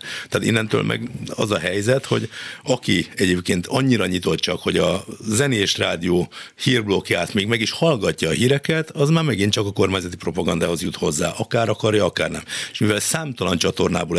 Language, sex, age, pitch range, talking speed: Hungarian, male, 60-79, 90-110 Hz, 170 wpm